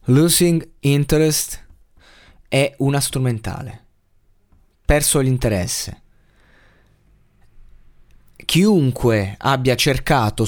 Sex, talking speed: male, 55 wpm